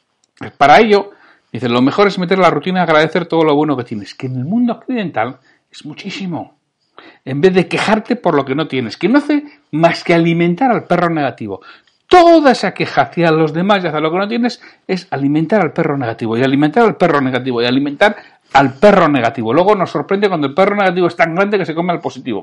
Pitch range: 135-195 Hz